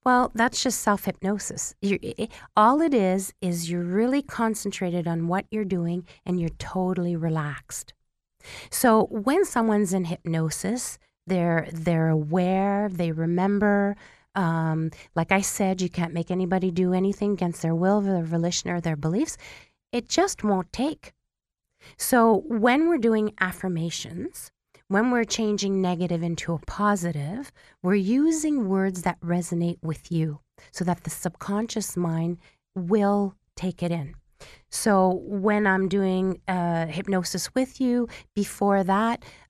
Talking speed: 135 wpm